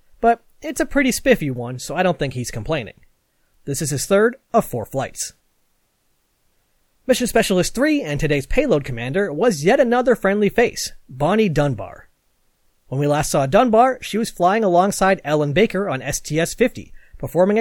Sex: male